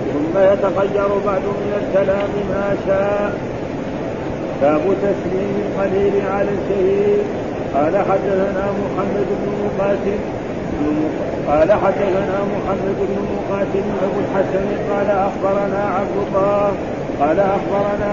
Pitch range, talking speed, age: 195-200 Hz, 100 wpm, 50-69